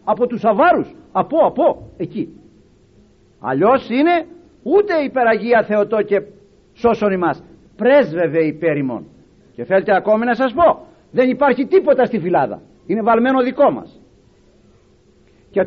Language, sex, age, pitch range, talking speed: Greek, male, 50-69, 205-265 Hz, 125 wpm